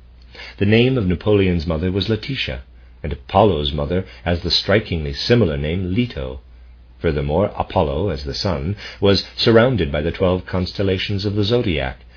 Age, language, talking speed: 50-69, English, 150 wpm